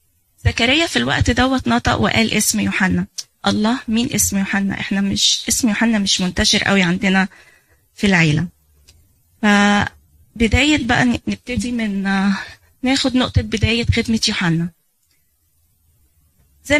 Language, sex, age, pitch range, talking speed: Arabic, female, 20-39, 185-230 Hz, 115 wpm